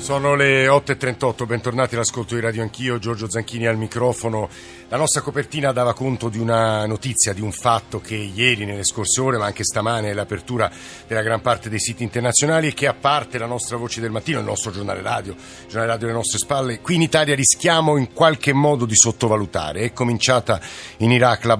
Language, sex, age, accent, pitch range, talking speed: Italian, male, 50-69, native, 110-135 Hz, 200 wpm